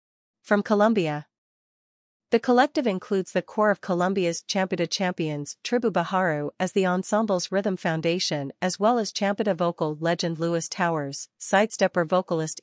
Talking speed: 135 wpm